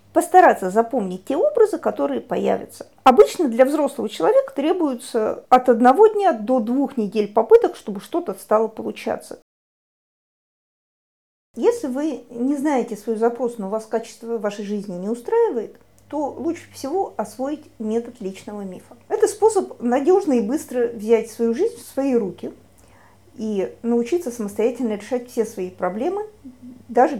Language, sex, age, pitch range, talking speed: Russian, female, 50-69, 225-295 Hz, 135 wpm